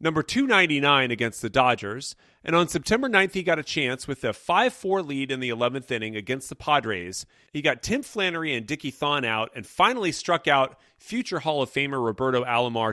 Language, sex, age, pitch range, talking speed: English, male, 30-49, 120-170 Hz, 195 wpm